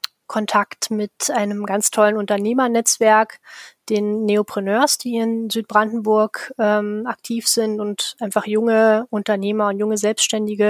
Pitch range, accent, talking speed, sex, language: 210-230 Hz, German, 120 wpm, female, German